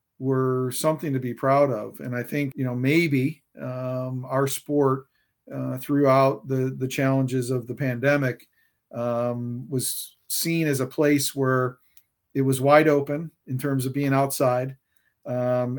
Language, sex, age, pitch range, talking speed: English, male, 50-69, 125-145 Hz, 150 wpm